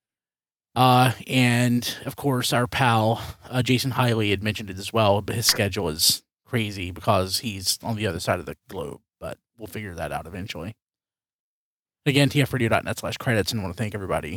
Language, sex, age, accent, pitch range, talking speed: English, male, 30-49, American, 100-125 Hz, 185 wpm